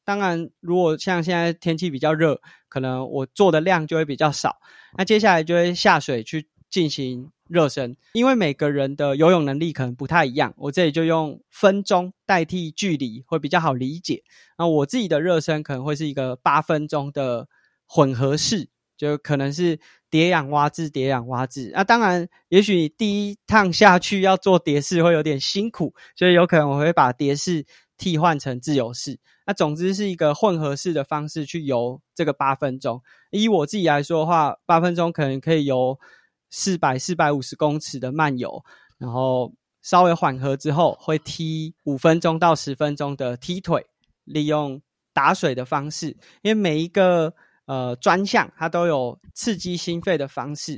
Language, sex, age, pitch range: Chinese, male, 20-39, 140-180 Hz